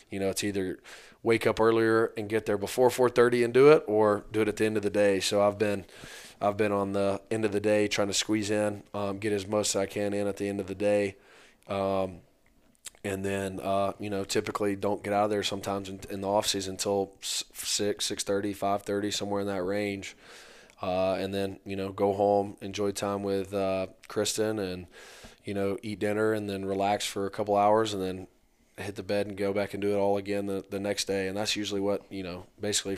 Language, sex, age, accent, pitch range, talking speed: English, male, 20-39, American, 95-105 Hz, 230 wpm